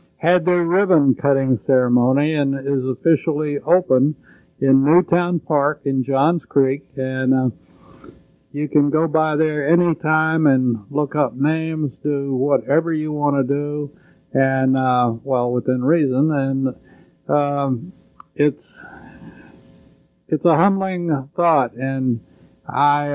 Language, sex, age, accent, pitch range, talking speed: English, male, 50-69, American, 130-150 Hz, 120 wpm